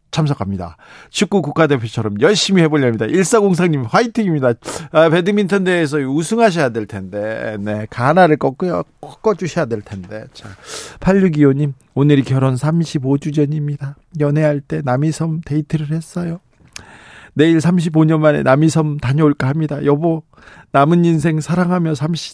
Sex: male